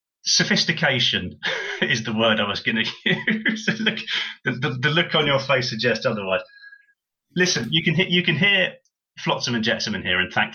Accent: British